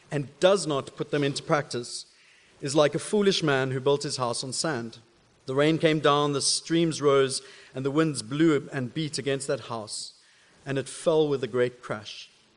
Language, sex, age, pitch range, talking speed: English, male, 40-59, 135-175 Hz, 195 wpm